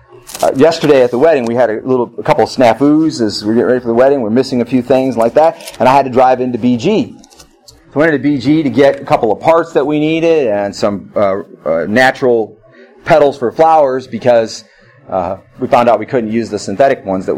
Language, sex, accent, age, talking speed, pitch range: English, male, American, 30-49, 245 wpm, 115-145 Hz